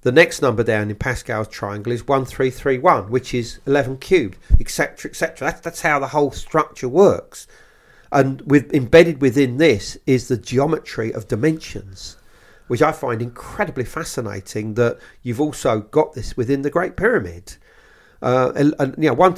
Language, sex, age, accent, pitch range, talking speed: English, male, 40-59, British, 110-140 Hz, 170 wpm